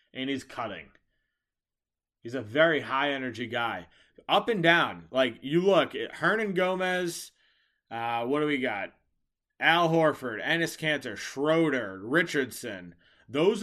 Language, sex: English, male